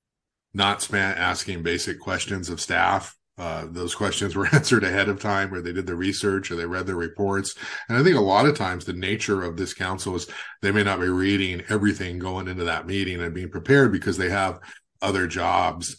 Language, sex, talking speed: English, male, 210 wpm